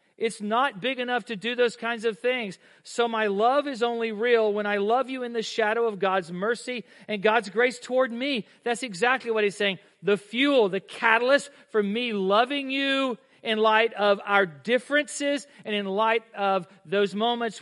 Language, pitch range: English, 210-250 Hz